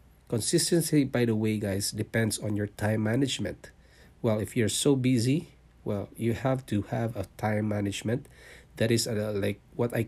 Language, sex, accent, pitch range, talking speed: English, male, Filipino, 105-120 Hz, 165 wpm